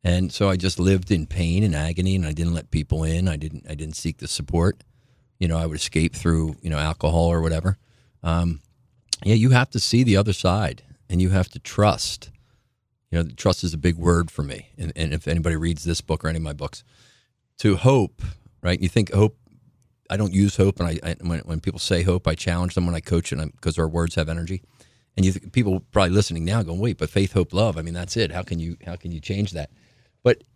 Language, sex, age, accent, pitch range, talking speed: English, male, 40-59, American, 85-115 Hz, 245 wpm